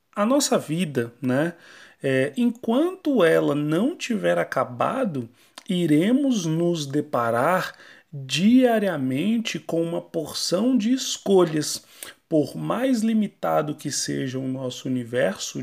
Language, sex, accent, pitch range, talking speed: Portuguese, male, Brazilian, 135-215 Hz, 100 wpm